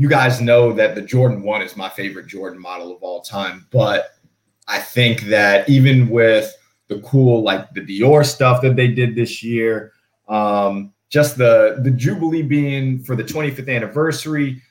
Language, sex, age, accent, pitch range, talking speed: English, male, 20-39, American, 110-130 Hz, 170 wpm